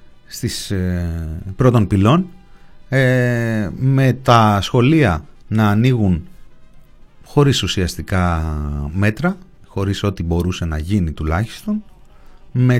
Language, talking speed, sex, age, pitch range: Greek, 85 wpm, male, 30-49, 100-150 Hz